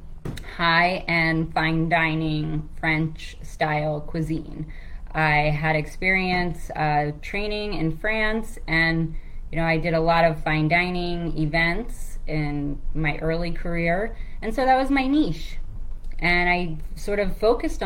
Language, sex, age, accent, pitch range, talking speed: English, female, 20-39, American, 155-200 Hz, 135 wpm